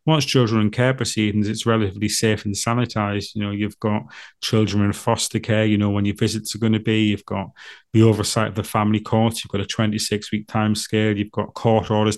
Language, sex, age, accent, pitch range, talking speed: English, male, 30-49, British, 105-110 Hz, 225 wpm